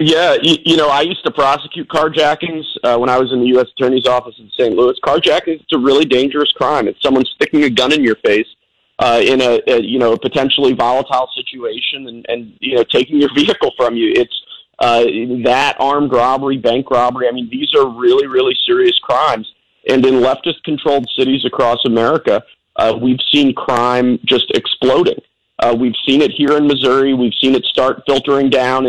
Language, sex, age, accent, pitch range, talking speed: English, male, 40-59, American, 120-145 Hz, 195 wpm